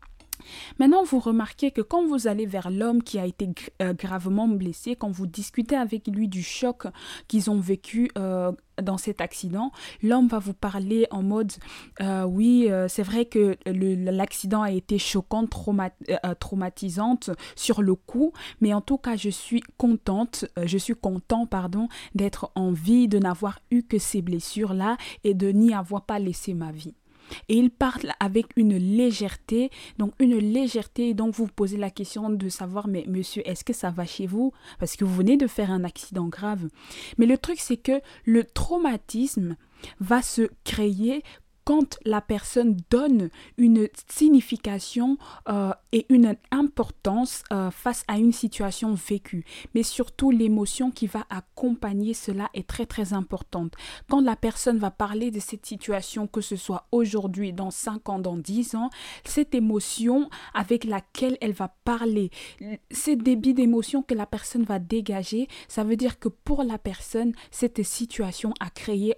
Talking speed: 170 wpm